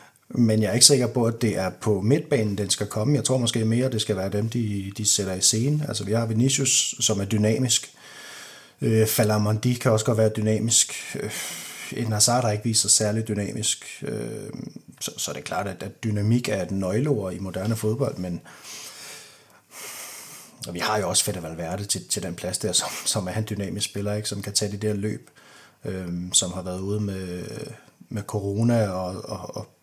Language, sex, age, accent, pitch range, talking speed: Danish, male, 30-49, native, 100-120 Hz, 205 wpm